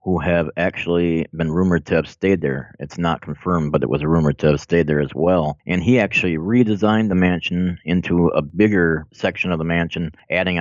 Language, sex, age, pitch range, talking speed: English, male, 30-49, 80-90 Hz, 205 wpm